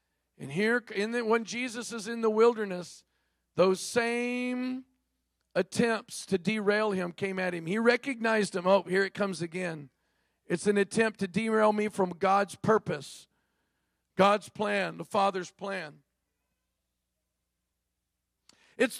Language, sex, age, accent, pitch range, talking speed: English, male, 50-69, American, 185-240 Hz, 125 wpm